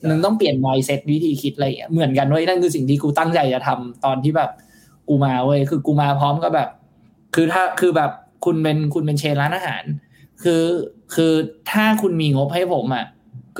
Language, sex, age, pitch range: Thai, male, 20-39, 135-160 Hz